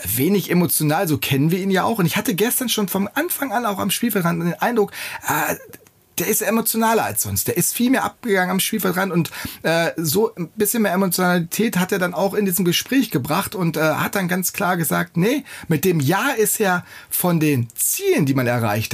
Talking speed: 215 wpm